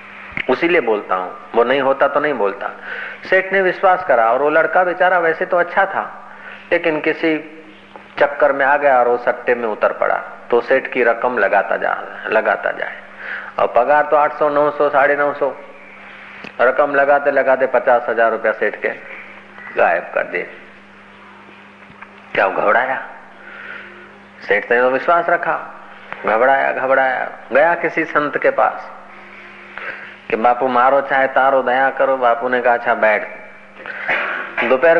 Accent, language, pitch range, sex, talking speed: native, Hindi, 120-150 Hz, male, 115 wpm